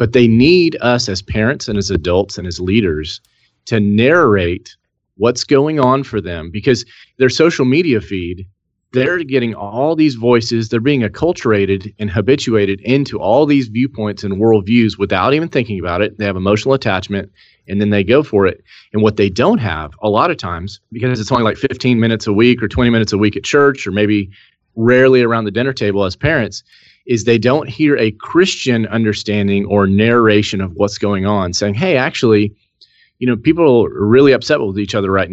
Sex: male